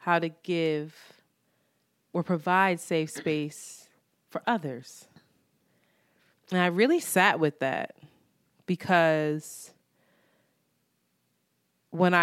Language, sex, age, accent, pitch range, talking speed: English, female, 20-39, American, 155-195 Hz, 85 wpm